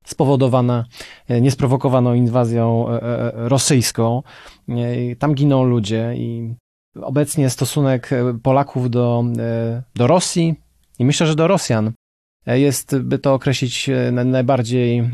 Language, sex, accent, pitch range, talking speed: Polish, male, native, 115-135 Hz, 95 wpm